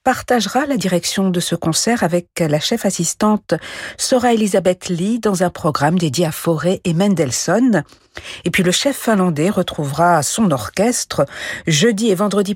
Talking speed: 155 wpm